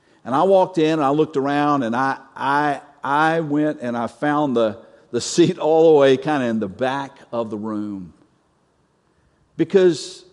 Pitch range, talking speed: 115-160 Hz, 180 wpm